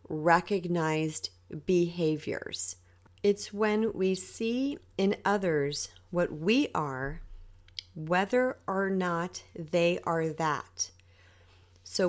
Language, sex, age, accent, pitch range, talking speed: English, female, 40-59, American, 140-190 Hz, 90 wpm